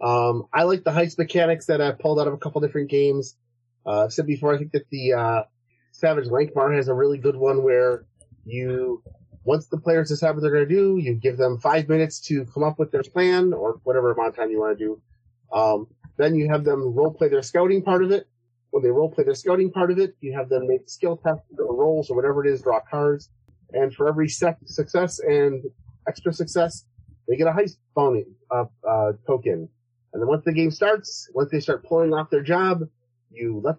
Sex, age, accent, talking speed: male, 30-49, American, 230 wpm